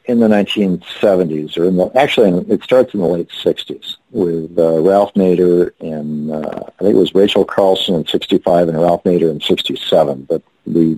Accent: American